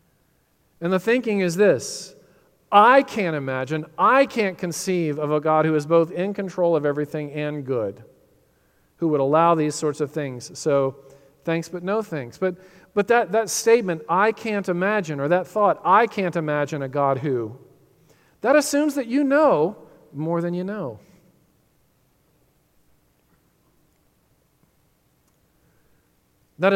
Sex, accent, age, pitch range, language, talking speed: male, American, 40-59, 145-190 Hz, English, 140 wpm